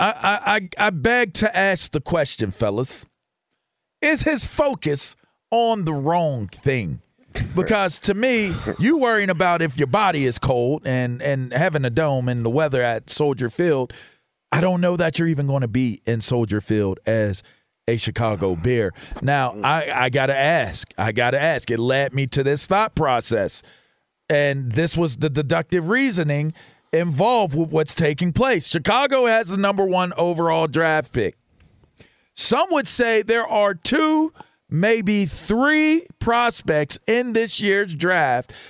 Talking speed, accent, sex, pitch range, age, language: 155 wpm, American, male, 145-215 Hz, 40-59, English